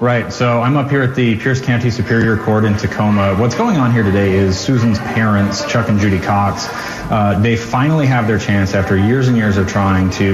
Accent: American